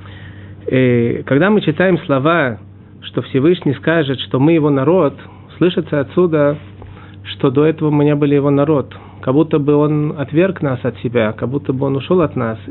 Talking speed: 175 wpm